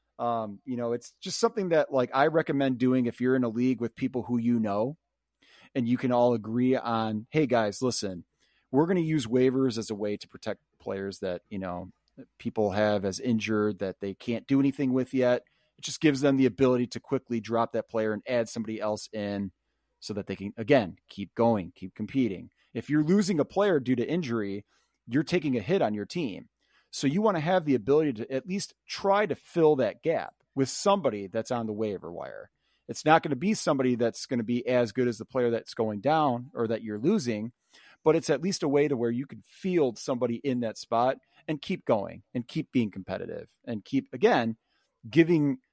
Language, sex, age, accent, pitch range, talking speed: English, male, 30-49, American, 110-140 Hz, 215 wpm